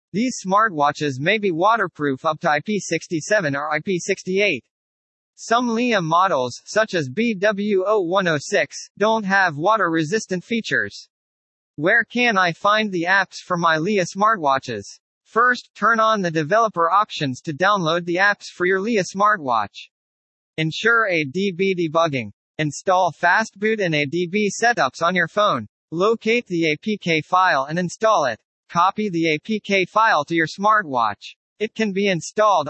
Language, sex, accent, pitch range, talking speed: English, male, American, 155-215 Hz, 135 wpm